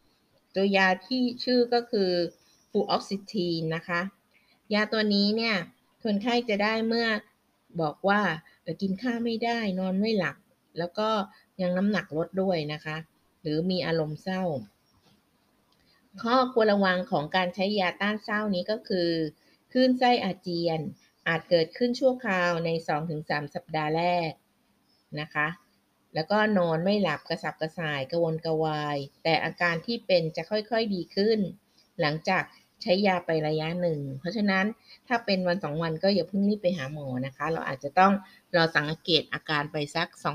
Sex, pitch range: female, 160-210 Hz